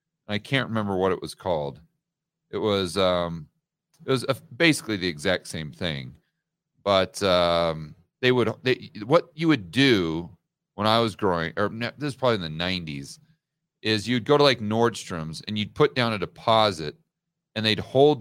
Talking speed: 170 wpm